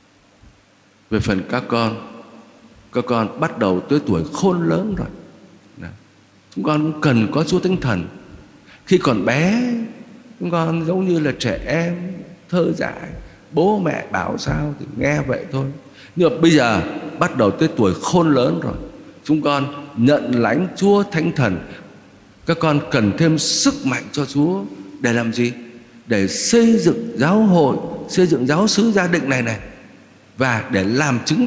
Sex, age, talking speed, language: male, 60-79, 165 wpm, Vietnamese